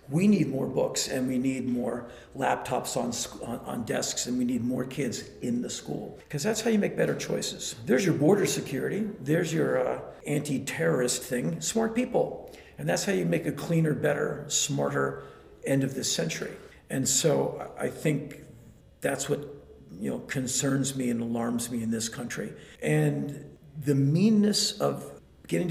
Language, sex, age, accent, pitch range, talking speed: English, male, 50-69, American, 120-145 Hz, 175 wpm